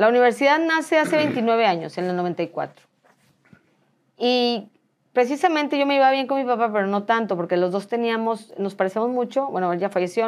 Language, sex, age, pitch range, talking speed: English, female, 30-49, 195-255 Hz, 185 wpm